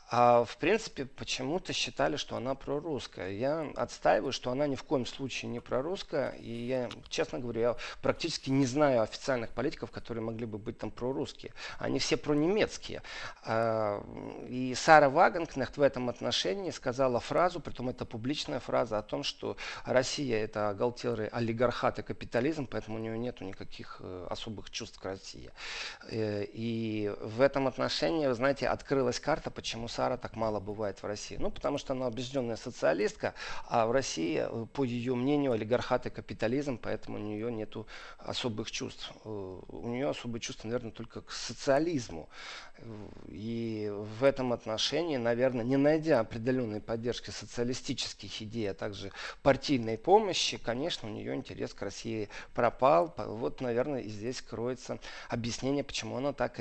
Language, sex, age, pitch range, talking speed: Russian, male, 40-59, 110-130 Hz, 150 wpm